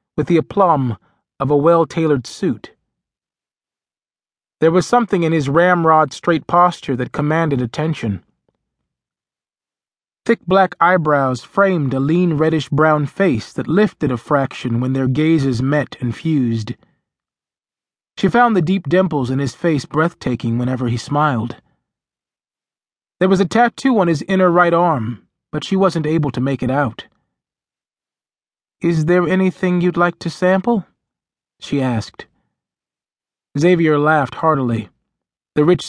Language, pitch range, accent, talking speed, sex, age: English, 135-175 Hz, American, 130 wpm, male, 30-49